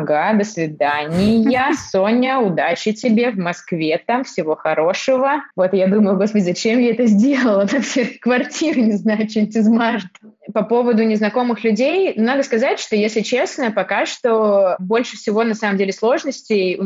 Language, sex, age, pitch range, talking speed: Russian, female, 20-39, 180-220 Hz, 150 wpm